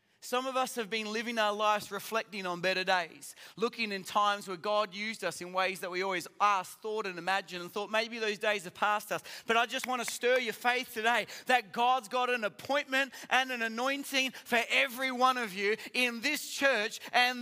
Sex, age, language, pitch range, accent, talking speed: male, 30-49, English, 240-310 Hz, Australian, 215 wpm